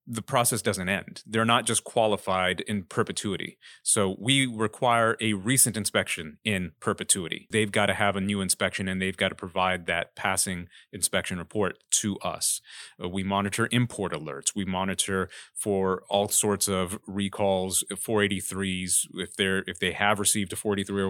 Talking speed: 160 wpm